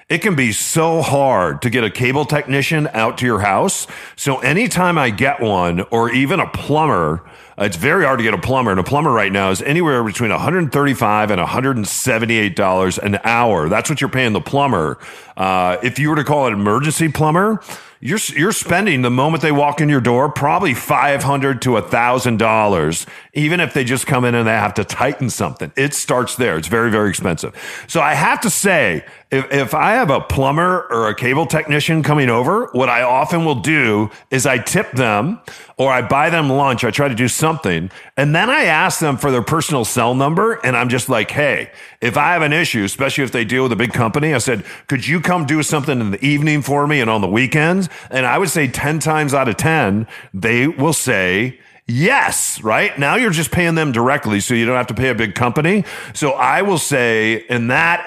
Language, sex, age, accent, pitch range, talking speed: English, male, 40-59, American, 115-150 Hz, 220 wpm